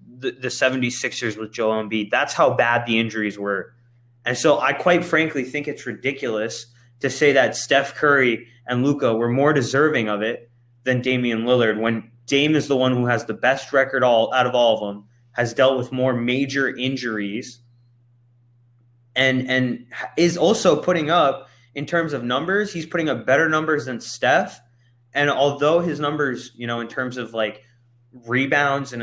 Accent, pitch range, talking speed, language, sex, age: American, 120-140 Hz, 180 wpm, English, male, 20-39